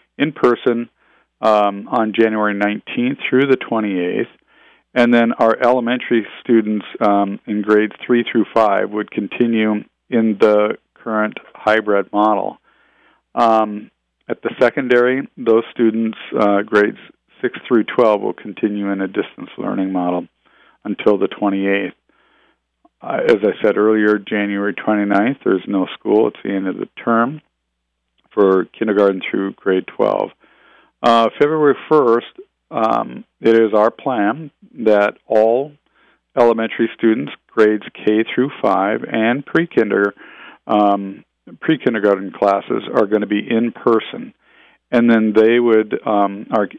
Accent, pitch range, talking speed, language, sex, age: American, 100-115 Hz, 130 wpm, English, male, 50-69